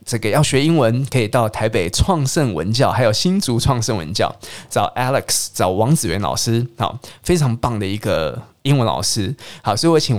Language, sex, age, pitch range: Chinese, male, 20-39, 115-145 Hz